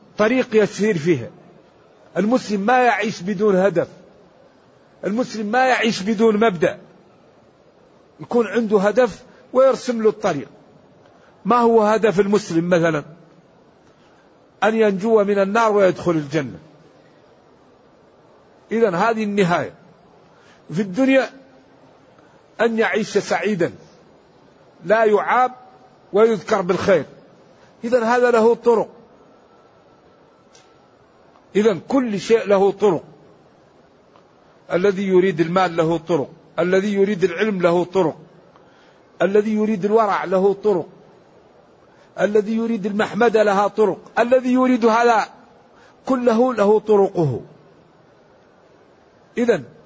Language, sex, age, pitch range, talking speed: Arabic, male, 50-69, 190-230 Hz, 95 wpm